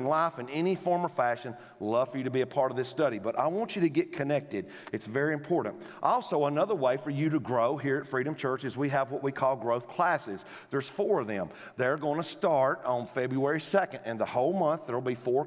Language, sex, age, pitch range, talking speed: English, male, 40-59, 125-170 Hz, 250 wpm